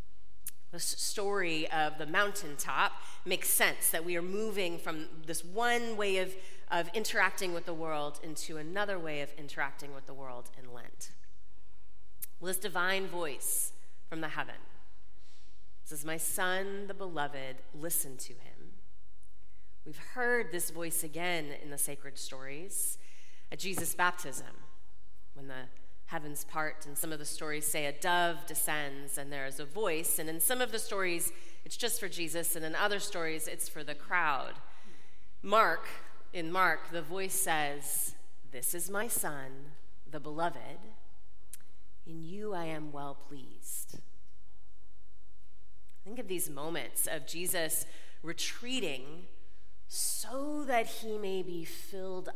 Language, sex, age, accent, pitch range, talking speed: English, female, 30-49, American, 130-185 Hz, 145 wpm